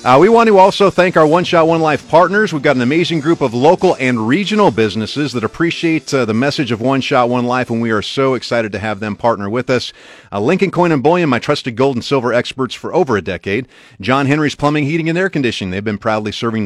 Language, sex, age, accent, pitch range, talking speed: English, male, 40-59, American, 105-150 Hz, 245 wpm